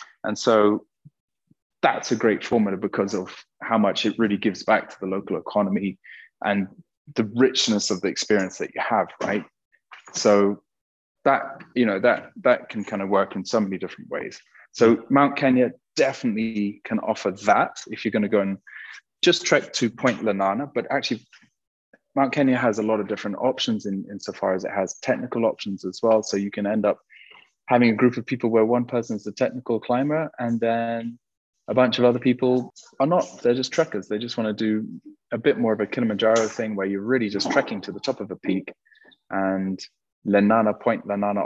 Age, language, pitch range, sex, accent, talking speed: 20-39, English, 100-125 Hz, male, British, 195 wpm